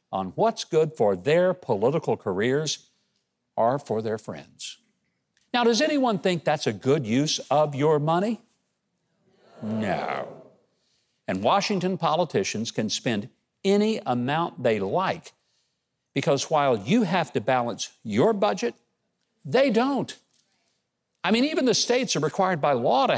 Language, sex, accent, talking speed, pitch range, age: English, male, American, 135 wpm, 135-210 Hz, 60-79